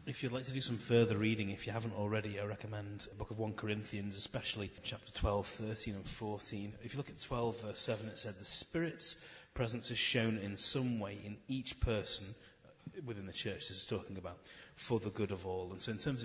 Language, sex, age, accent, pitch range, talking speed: English, male, 30-49, British, 100-115 Hz, 225 wpm